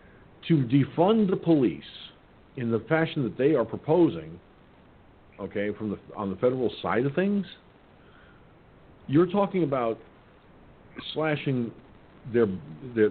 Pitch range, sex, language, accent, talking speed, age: 110-165 Hz, male, English, American, 120 wpm, 50-69